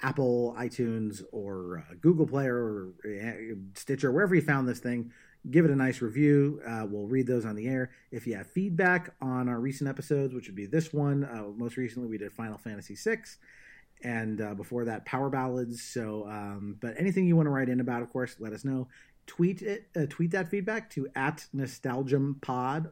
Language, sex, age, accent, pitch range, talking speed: English, male, 30-49, American, 115-145 Hz, 205 wpm